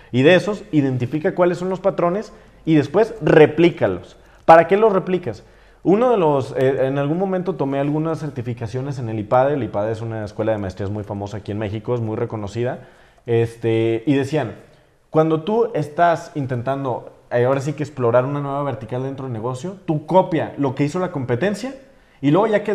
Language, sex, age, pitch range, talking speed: Spanish, male, 30-49, 120-160 Hz, 185 wpm